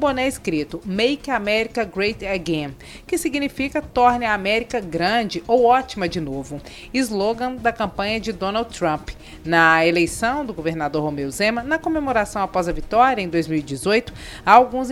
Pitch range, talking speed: 175-245 Hz, 145 wpm